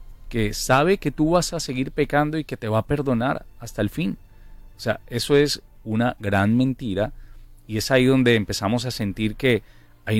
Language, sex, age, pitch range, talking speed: English, male, 40-59, 105-130 Hz, 195 wpm